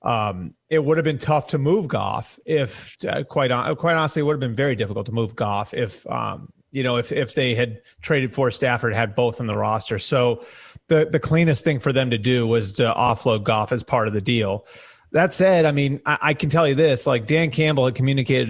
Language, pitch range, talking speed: English, 120-150 Hz, 235 wpm